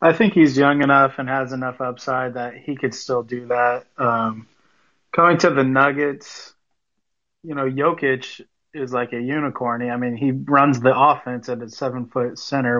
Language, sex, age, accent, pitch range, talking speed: English, male, 30-49, American, 125-140 Hz, 175 wpm